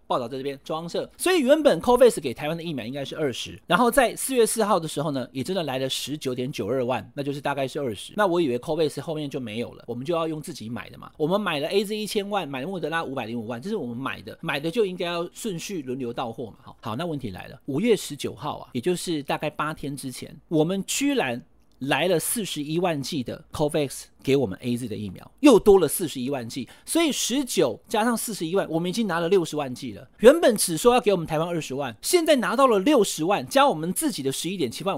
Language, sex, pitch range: Chinese, male, 145-230 Hz